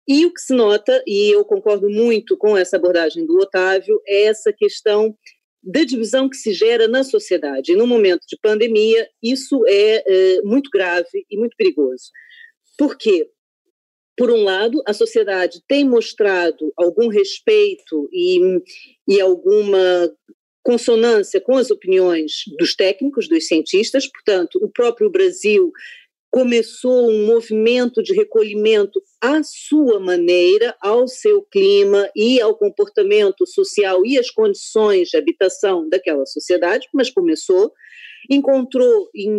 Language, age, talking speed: Portuguese, 40-59, 135 wpm